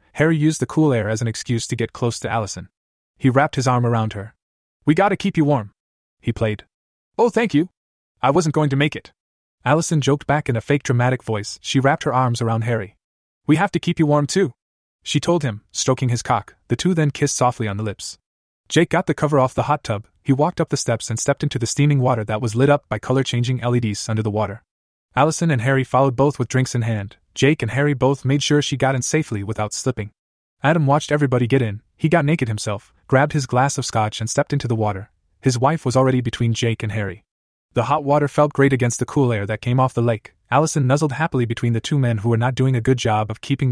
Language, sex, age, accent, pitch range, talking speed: English, male, 20-39, American, 110-145 Hz, 245 wpm